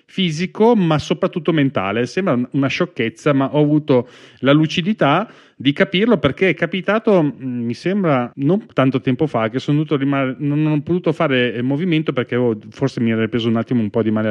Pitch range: 120-155 Hz